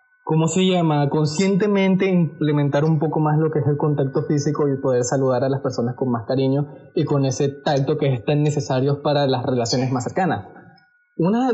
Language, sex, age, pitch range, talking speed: Spanish, male, 20-39, 145-175 Hz, 190 wpm